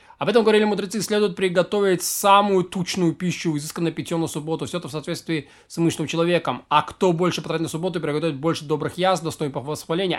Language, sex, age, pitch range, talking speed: Russian, male, 20-39, 155-200 Hz, 190 wpm